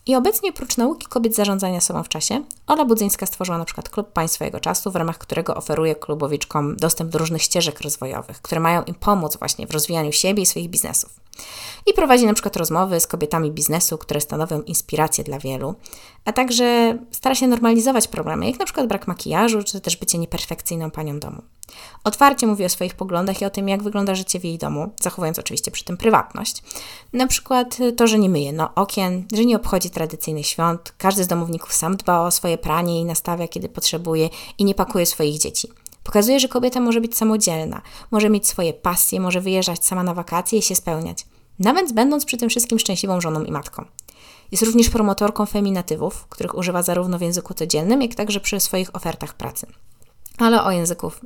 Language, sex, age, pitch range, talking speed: Polish, female, 20-39, 165-225 Hz, 190 wpm